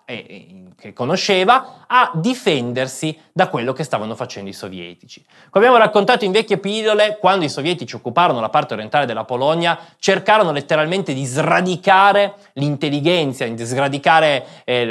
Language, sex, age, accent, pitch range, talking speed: Italian, male, 20-39, native, 125-185 Hz, 140 wpm